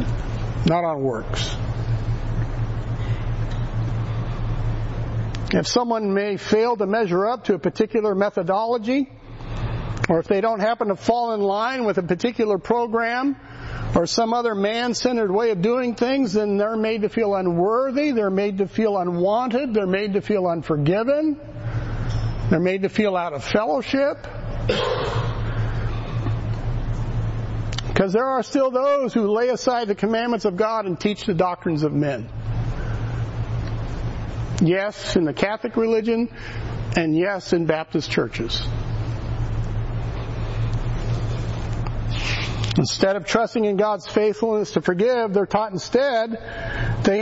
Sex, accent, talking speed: male, American, 125 wpm